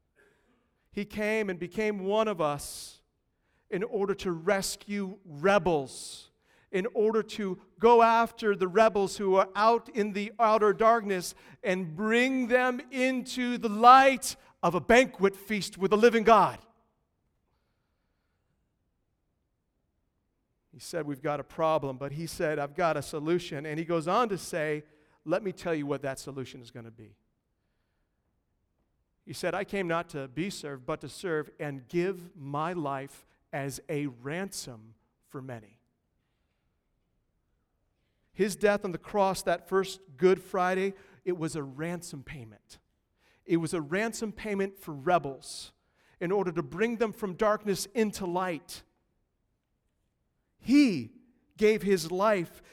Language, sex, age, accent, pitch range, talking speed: English, male, 50-69, American, 150-210 Hz, 140 wpm